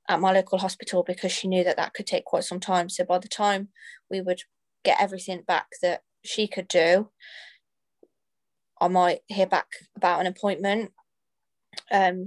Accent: British